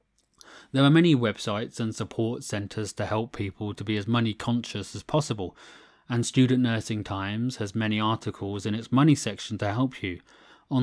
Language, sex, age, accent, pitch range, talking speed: English, male, 30-49, British, 105-125 Hz, 175 wpm